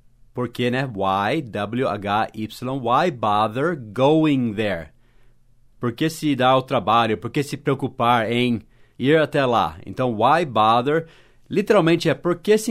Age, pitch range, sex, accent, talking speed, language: 40-59, 120-150 Hz, male, Brazilian, 130 wpm, English